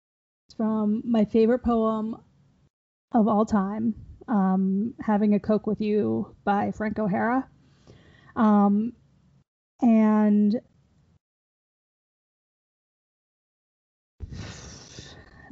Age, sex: 20-39, female